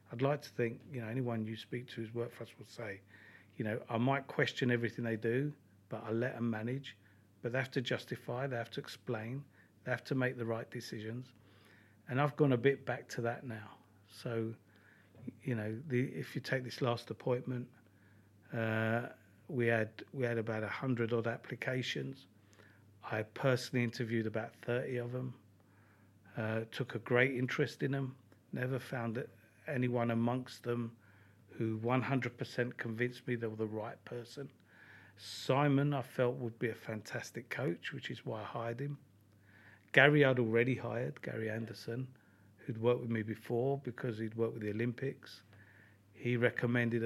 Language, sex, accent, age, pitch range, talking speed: English, male, British, 40-59, 110-125 Hz, 175 wpm